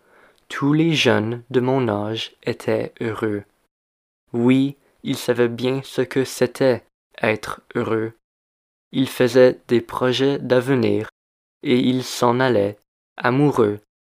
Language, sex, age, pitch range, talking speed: French, male, 20-39, 105-130 Hz, 115 wpm